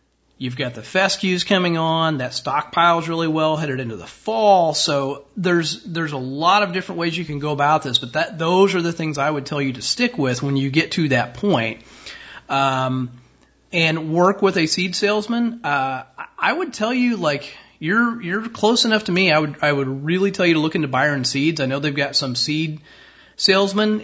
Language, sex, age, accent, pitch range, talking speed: English, male, 30-49, American, 135-170 Hz, 210 wpm